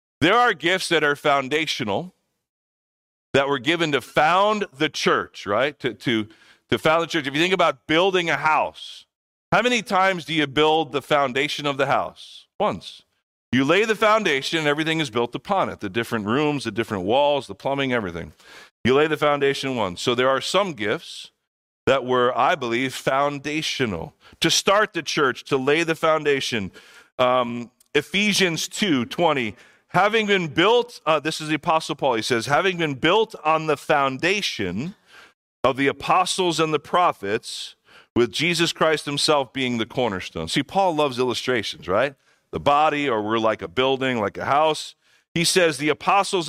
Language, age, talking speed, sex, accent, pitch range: English, 40-59, 170 wpm, male, American, 125-170 Hz